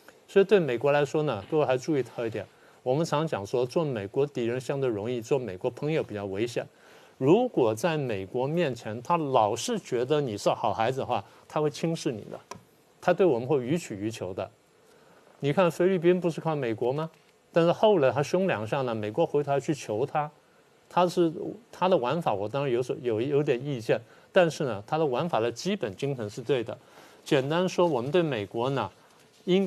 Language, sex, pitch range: Chinese, male, 125-175 Hz